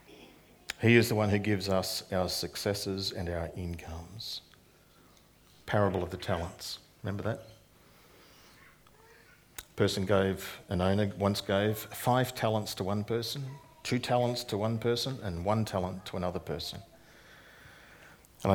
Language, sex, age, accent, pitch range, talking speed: English, male, 50-69, Australian, 95-110 Hz, 135 wpm